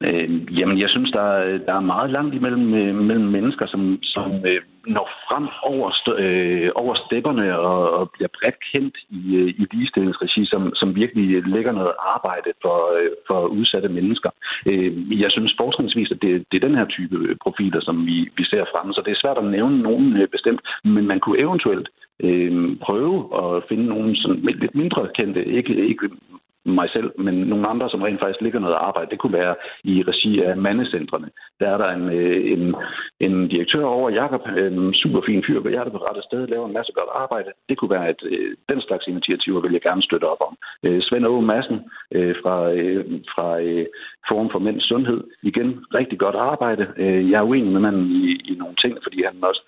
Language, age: Danish, 60-79